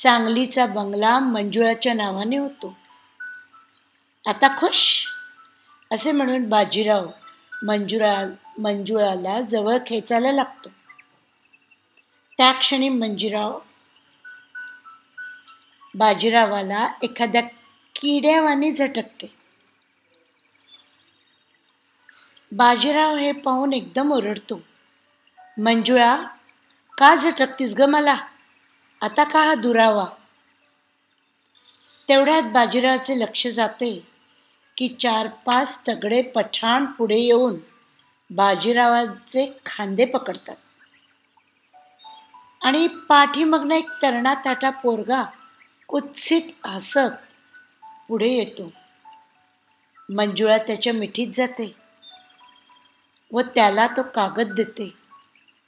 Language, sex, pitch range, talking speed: Marathi, female, 225-295 Hz, 65 wpm